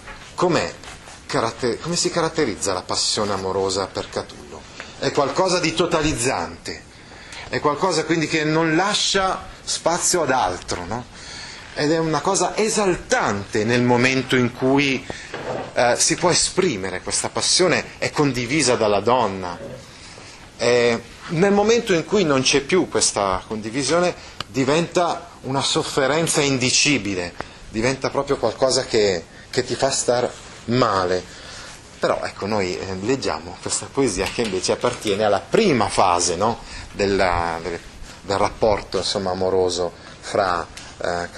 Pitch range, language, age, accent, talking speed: 100-150 Hz, Italian, 30-49, native, 125 wpm